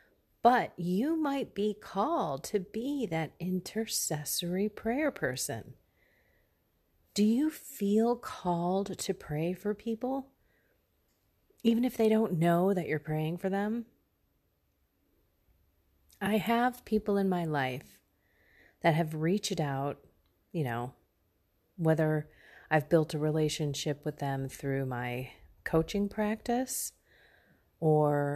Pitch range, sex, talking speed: 135-195 Hz, female, 110 wpm